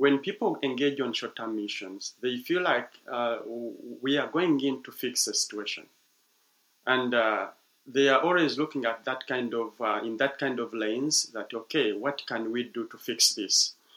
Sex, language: male, English